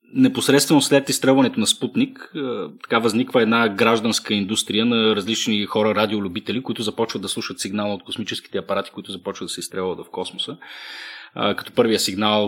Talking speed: 155 wpm